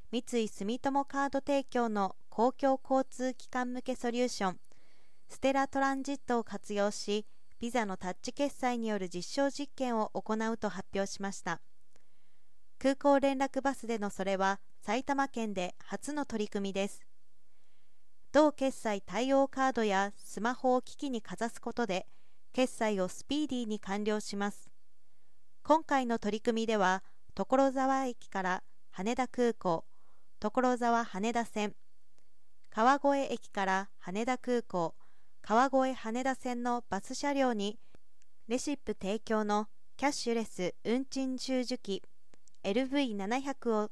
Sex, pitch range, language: female, 205-260 Hz, Japanese